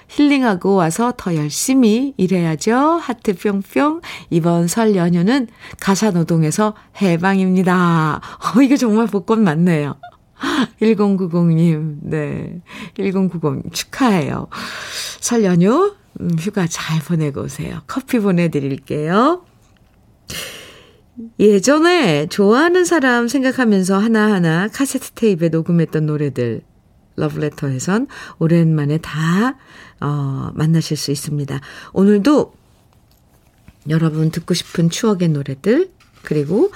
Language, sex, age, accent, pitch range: Korean, female, 50-69, native, 160-225 Hz